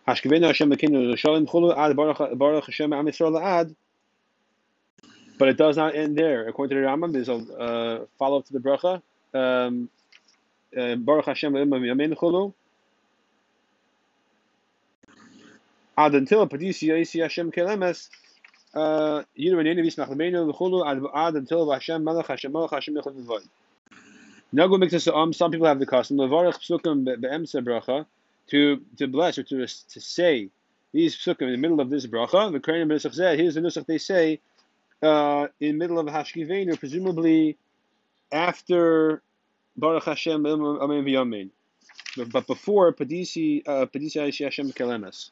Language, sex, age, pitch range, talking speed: English, male, 30-49, 135-165 Hz, 85 wpm